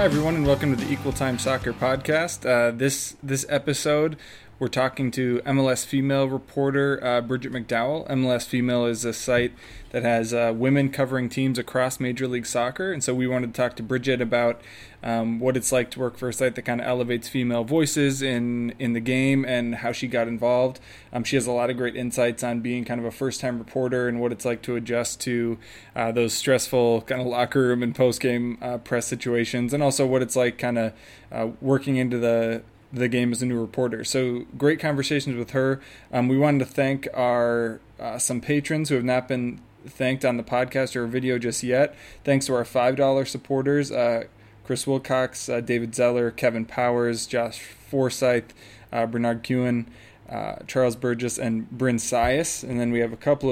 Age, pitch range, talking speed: 20-39, 120-130 Hz, 200 wpm